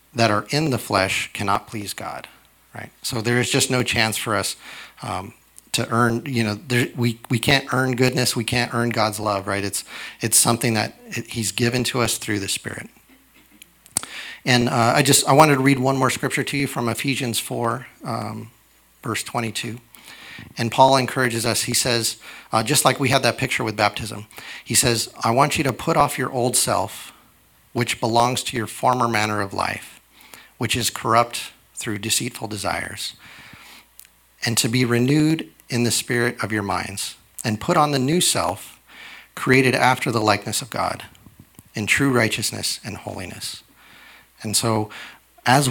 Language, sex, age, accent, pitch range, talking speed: English, male, 40-59, American, 110-125 Hz, 175 wpm